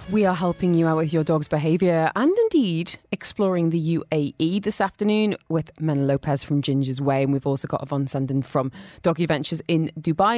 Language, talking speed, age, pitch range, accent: English, 190 wpm, 30-49, 150-215 Hz, British